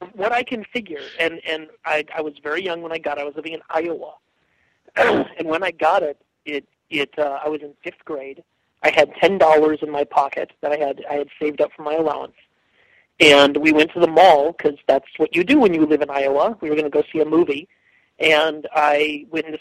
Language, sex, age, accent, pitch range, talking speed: English, male, 40-59, American, 145-165 Hz, 235 wpm